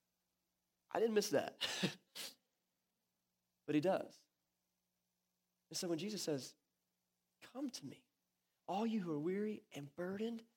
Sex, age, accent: male, 20-39, American